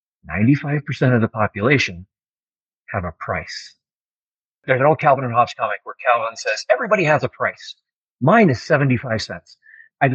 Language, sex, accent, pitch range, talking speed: English, male, American, 110-150 Hz, 155 wpm